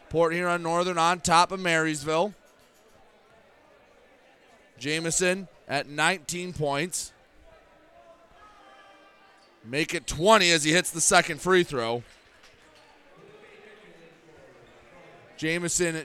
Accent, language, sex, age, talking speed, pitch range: American, English, male, 30-49, 85 wpm, 165-190 Hz